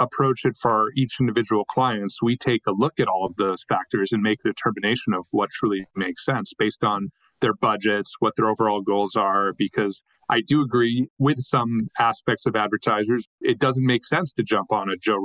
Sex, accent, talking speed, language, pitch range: male, American, 205 wpm, English, 110-130 Hz